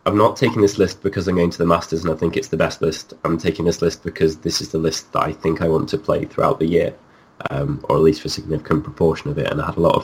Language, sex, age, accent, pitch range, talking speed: English, male, 20-39, British, 80-85 Hz, 315 wpm